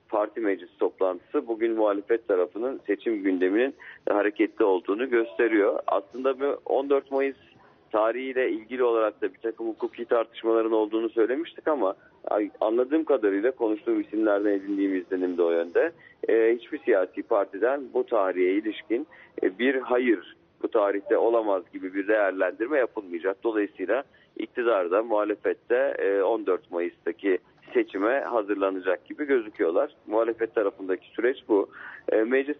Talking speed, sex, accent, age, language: 115 wpm, male, native, 40-59, Turkish